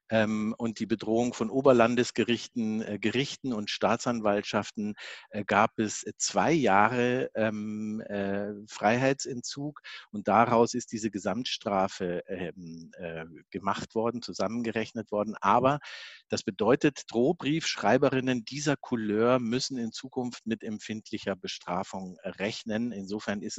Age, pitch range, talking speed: 50-69, 100-120 Hz, 95 wpm